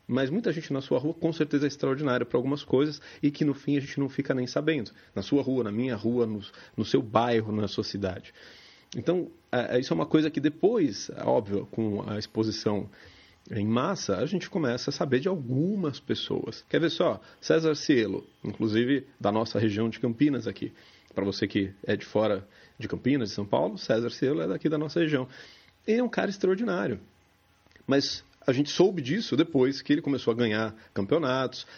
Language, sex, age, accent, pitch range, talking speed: Portuguese, male, 30-49, Brazilian, 110-145 Hz, 195 wpm